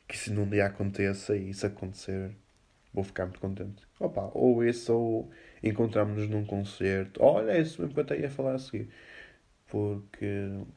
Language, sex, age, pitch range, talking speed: Portuguese, male, 20-39, 100-115 Hz, 150 wpm